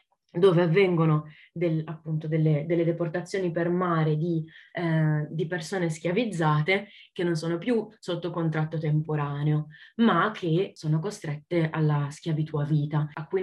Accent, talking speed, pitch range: native, 140 wpm, 155-175 Hz